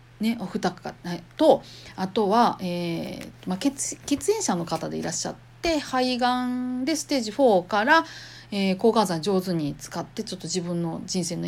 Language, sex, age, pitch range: Japanese, female, 40-59, 180-295 Hz